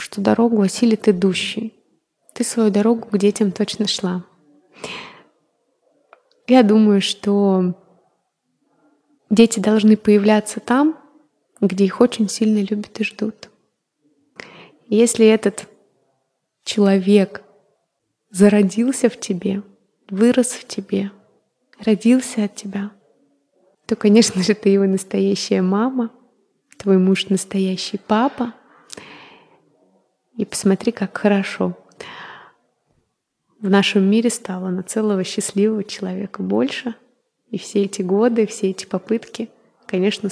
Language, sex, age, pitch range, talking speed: Russian, female, 20-39, 190-225 Hz, 105 wpm